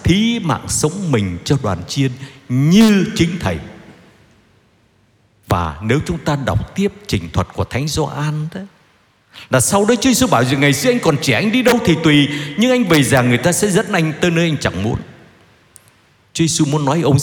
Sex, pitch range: male, 115-170 Hz